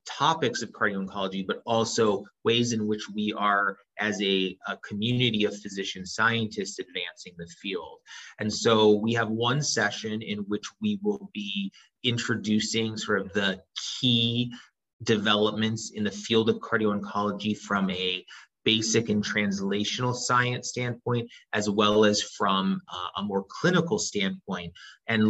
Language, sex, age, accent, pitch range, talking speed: English, male, 30-49, American, 105-125 Hz, 145 wpm